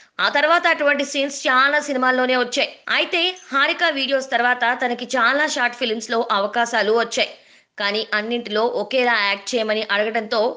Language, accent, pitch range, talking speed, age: Telugu, native, 230-275 Hz, 135 wpm, 20-39